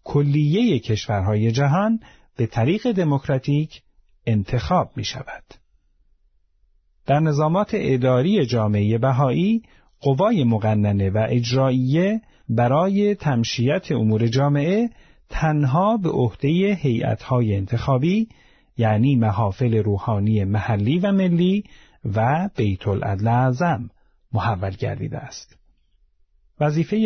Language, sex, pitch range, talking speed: Persian, male, 110-165 Hz, 90 wpm